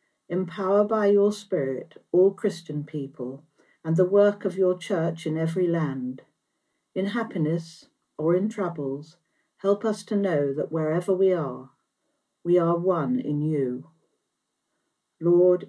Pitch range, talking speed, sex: 155-190 Hz, 135 wpm, female